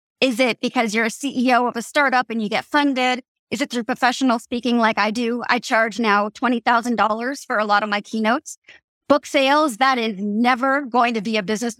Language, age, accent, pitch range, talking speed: English, 30-49, American, 225-265 Hz, 210 wpm